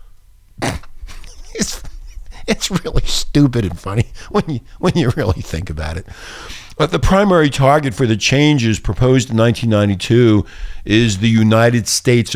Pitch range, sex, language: 110-180 Hz, male, English